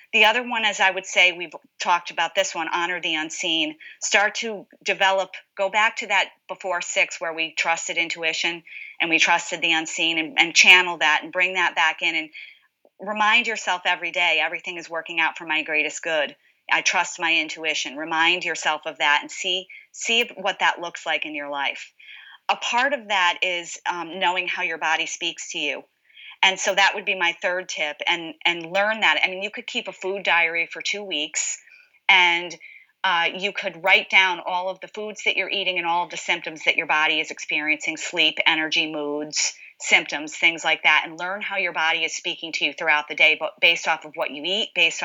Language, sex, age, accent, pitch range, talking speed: English, female, 40-59, American, 160-190 Hz, 210 wpm